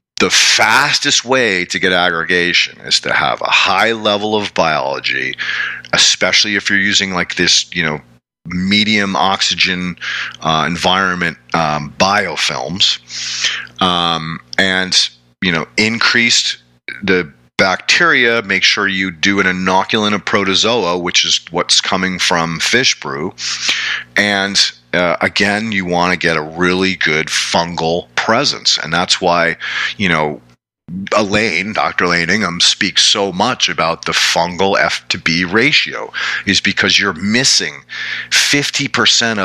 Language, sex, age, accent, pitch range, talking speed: English, male, 40-59, American, 80-100 Hz, 130 wpm